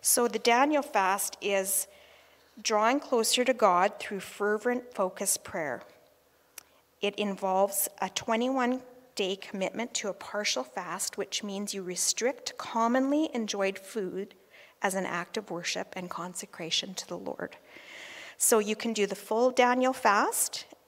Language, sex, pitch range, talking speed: English, female, 180-220 Hz, 140 wpm